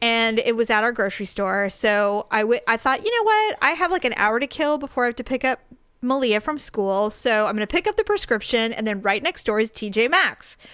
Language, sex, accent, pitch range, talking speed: English, female, American, 210-270 Hz, 250 wpm